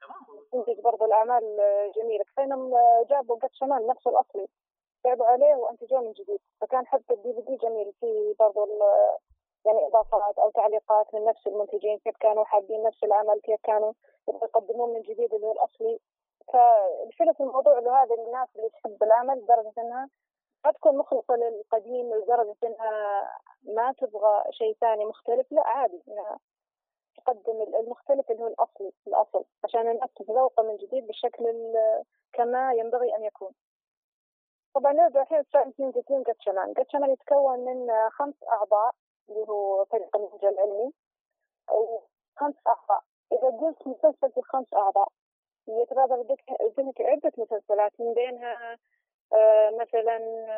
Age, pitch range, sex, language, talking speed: 30-49, 215-270 Hz, female, Arabic, 135 wpm